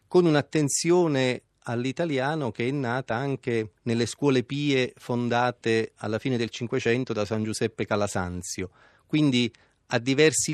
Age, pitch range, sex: 30-49, 110-135 Hz, male